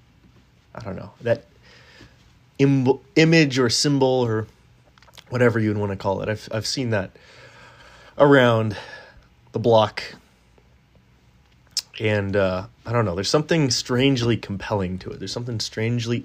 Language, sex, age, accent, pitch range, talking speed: English, male, 30-49, American, 95-125 Hz, 135 wpm